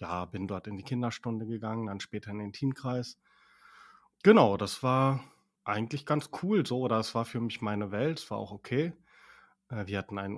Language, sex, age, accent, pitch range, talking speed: German, male, 30-49, German, 110-130 Hz, 190 wpm